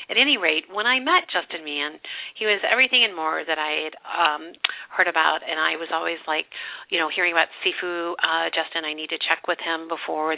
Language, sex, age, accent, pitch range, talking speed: English, female, 40-59, American, 160-190 Hz, 220 wpm